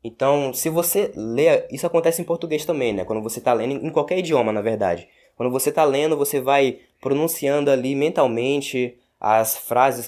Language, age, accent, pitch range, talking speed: Portuguese, 20-39, Brazilian, 125-160 Hz, 180 wpm